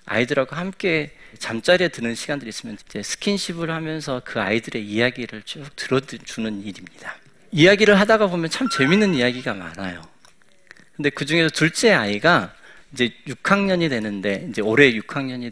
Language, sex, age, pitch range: Korean, male, 40-59, 115-170 Hz